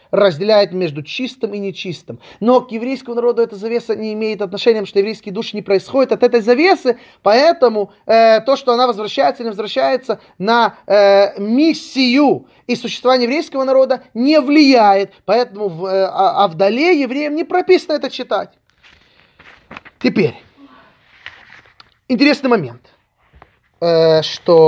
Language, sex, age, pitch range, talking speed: Russian, male, 20-39, 180-265 Hz, 135 wpm